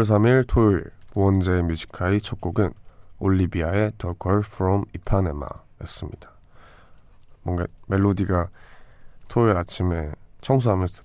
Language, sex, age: Korean, male, 20-39